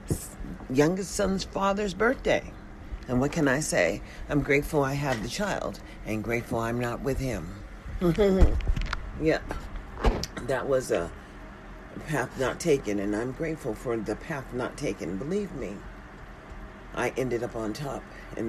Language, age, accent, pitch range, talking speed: English, 50-69, American, 120-155 Hz, 145 wpm